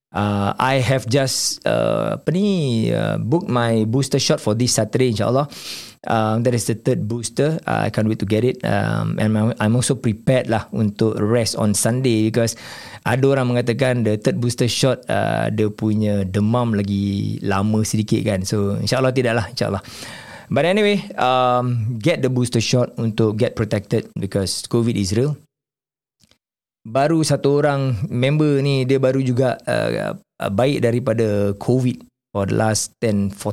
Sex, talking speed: male, 165 wpm